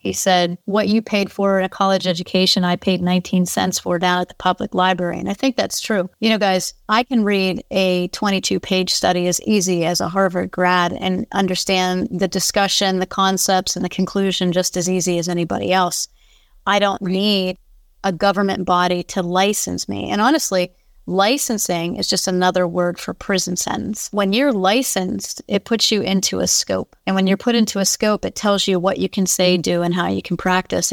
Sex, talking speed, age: female, 200 wpm, 30-49